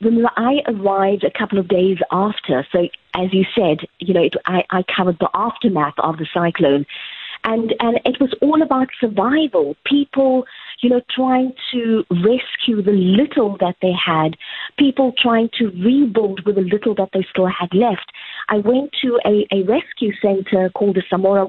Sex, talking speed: female, 175 wpm